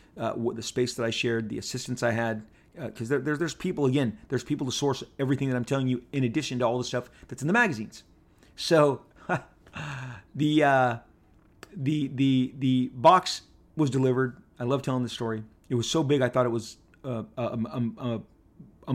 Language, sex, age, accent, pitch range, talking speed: English, male, 30-49, American, 120-145 Hz, 205 wpm